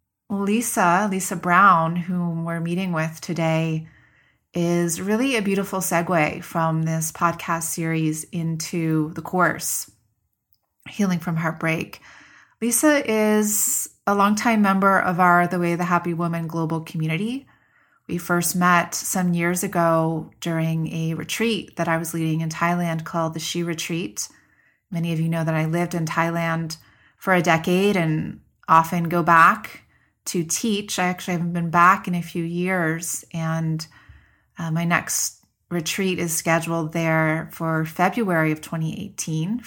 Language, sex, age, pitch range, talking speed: English, female, 30-49, 160-180 Hz, 145 wpm